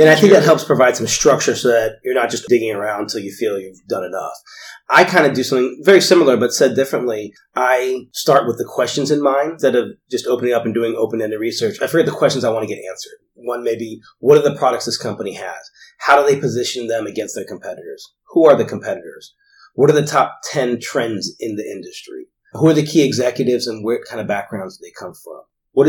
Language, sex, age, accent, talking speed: English, male, 30-49, American, 235 wpm